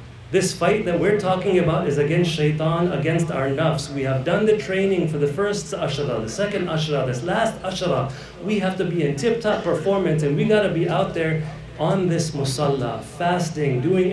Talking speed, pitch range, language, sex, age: 195 wpm, 140-180 Hz, English, male, 40-59